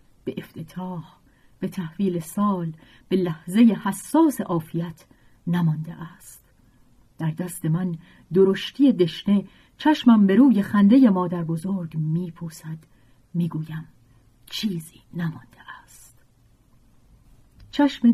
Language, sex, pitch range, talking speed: Persian, female, 155-195 Hz, 95 wpm